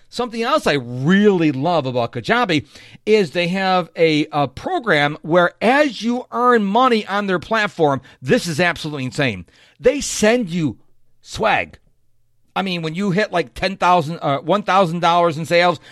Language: English